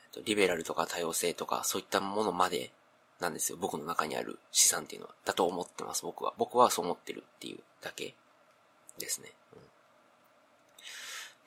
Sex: male